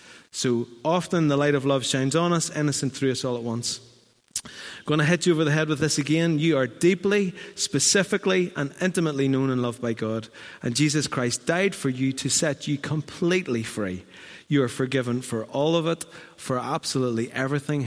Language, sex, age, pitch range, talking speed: English, male, 30-49, 120-155 Hz, 195 wpm